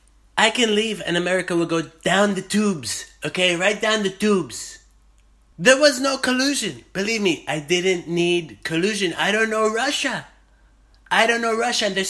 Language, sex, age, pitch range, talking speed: English, male, 30-49, 165-220 Hz, 175 wpm